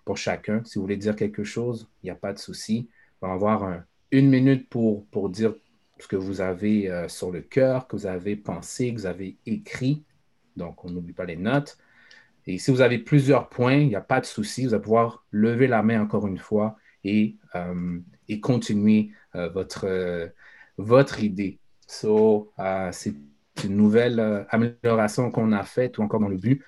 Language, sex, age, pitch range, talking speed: French, male, 30-49, 95-120 Hz, 200 wpm